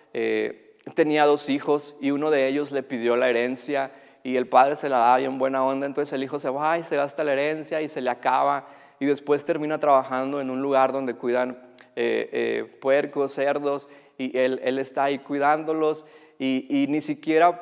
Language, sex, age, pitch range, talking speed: Spanish, male, 30-49, 135-160 Hz, 200 wpm